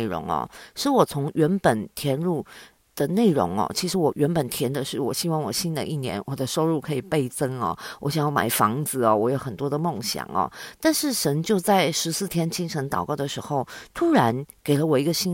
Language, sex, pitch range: Chinese, female, 140-195 Hz